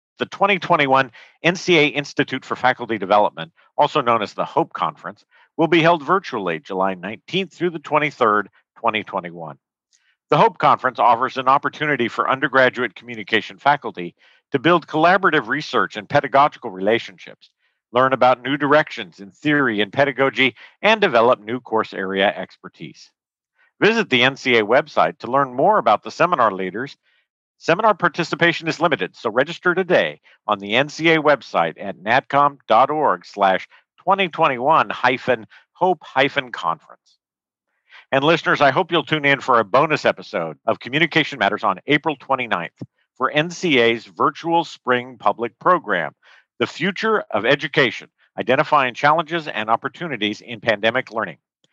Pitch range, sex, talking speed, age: 120-165 Hz, male, 135 wpm, 50-69